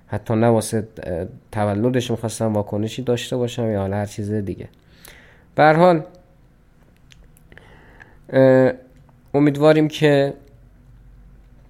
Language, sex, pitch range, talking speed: Persian, male, 110-150 Hz, 70 wpm